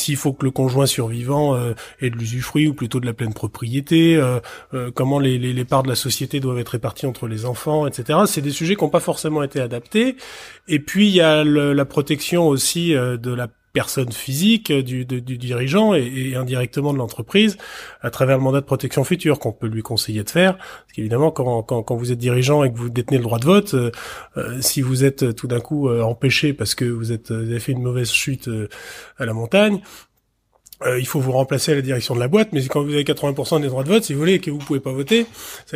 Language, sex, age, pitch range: French, male, 30-49, 125-155 Hz